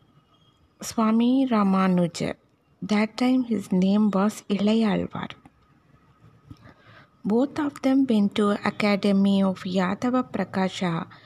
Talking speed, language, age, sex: 95 wpm, Tamil, 20-39, female